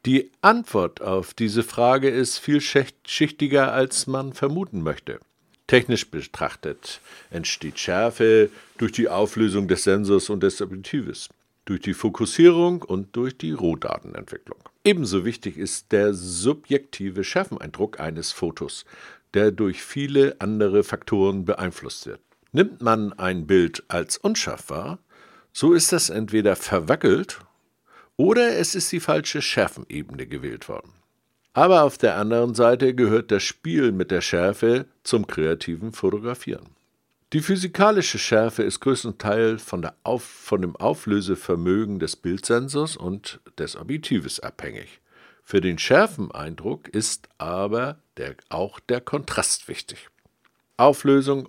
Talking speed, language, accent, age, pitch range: 120 wpm, German, German, 60-79, 100-135 Hz